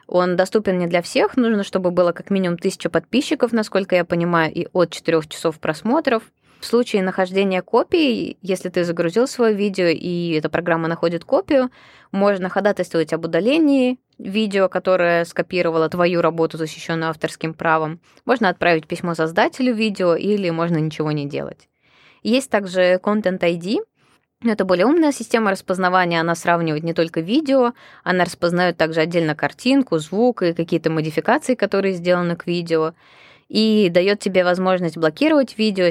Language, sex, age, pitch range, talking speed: Russian, female, 20-39, 160-195 Hz, 150 wpm